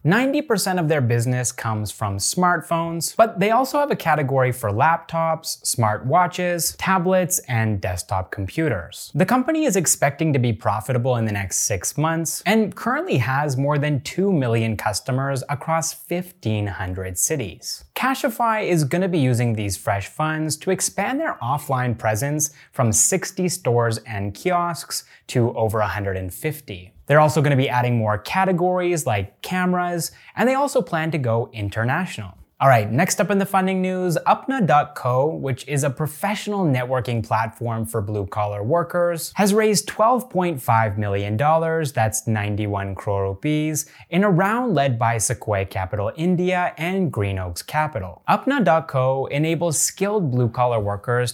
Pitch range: 110-175 Hz